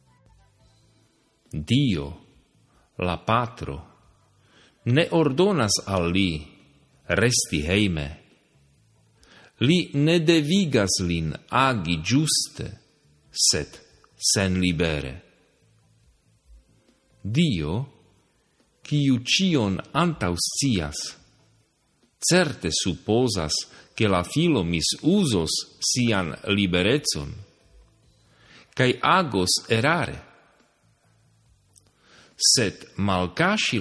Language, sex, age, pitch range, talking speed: Slovak, male, 50-69, 90-125 Hz, 60 wpm